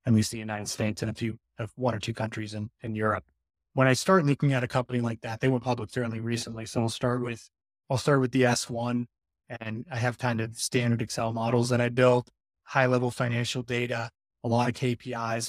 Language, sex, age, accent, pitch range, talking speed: English, male, 30-49, American, 115-130 Hz, 230 wpm